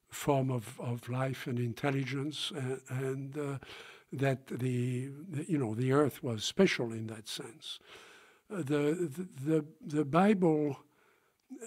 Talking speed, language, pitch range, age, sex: 145 wpm, English, 125-155 Hz, 60-79, male